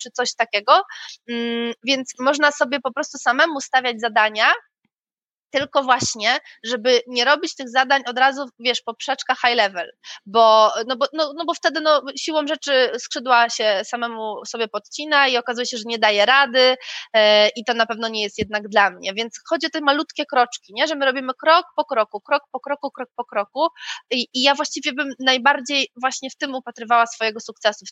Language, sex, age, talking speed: Polish, female, 20-39, 190 wpm